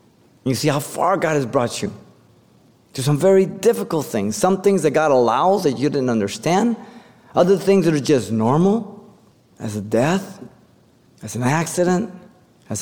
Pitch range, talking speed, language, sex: 115-170 Hz, 165 wpm, English, male